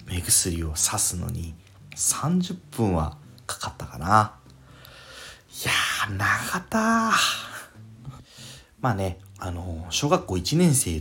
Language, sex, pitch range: Japanese, male, 85-120 Hz